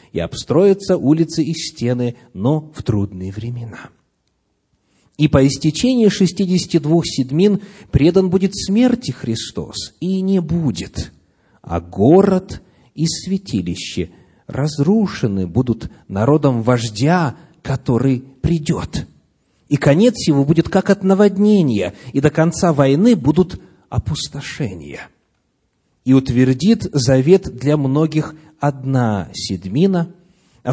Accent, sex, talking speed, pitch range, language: native, male, 105 wpm, 125-175 Hz, Russian